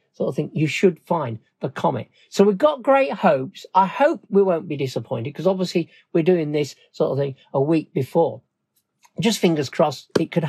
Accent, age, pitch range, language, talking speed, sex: British, 40-59, 160-225 Hz, English, 200 wpm, male